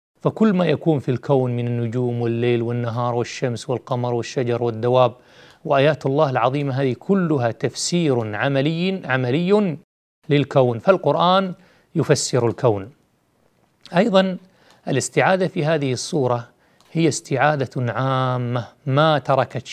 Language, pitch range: Arabic, 125-155 Hz